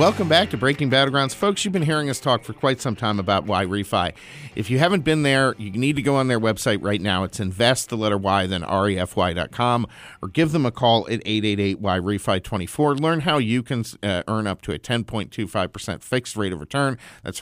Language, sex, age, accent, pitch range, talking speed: English, male, 50-69, American, 100-130 Hz, 215 wpm